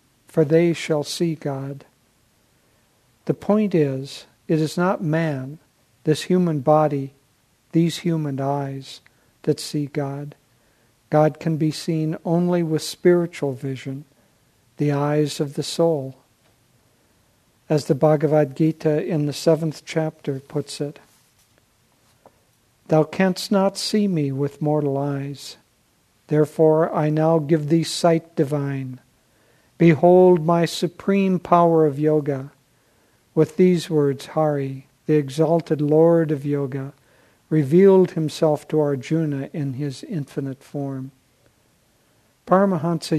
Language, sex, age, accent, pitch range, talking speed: English, male, 60-79, American, 140-165 Hz, 115 wpm